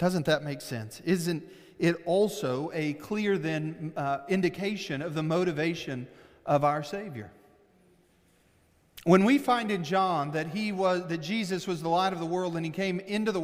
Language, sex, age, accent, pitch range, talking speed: English, male, 40-59, American, 145-190 Hz, 165 wpm